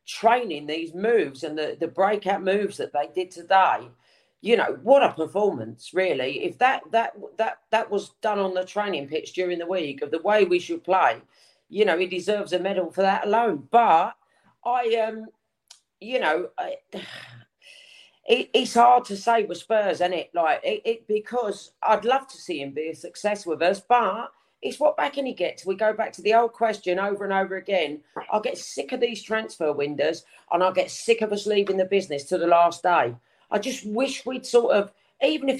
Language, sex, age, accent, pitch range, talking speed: English, female, 40-59, British, 185-265 Hz, 205 wpm